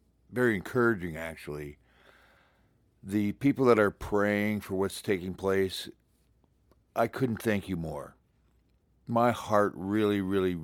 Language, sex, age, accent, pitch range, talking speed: English, male, 60-79, American, 90-115 Hz, 120 wpm